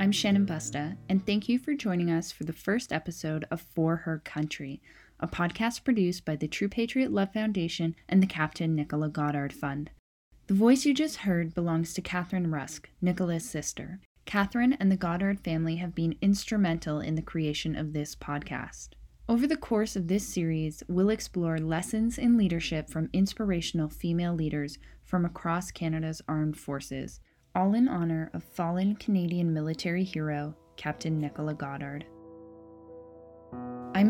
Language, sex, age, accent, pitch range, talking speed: English, female, 10-29, American, 155-195 Hz, 155 wpm